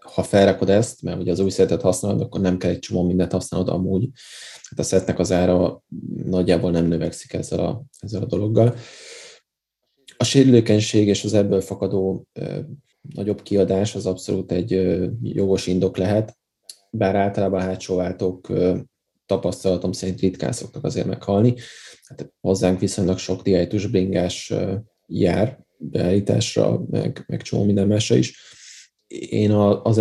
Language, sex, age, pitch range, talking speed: Hungarian, male, 20-39, 95-105 Hz, 140 wpm